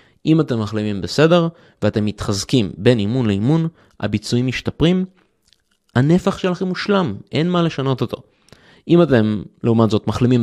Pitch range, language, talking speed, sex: 105-150 Hz, Hebrew, 130 wpm, male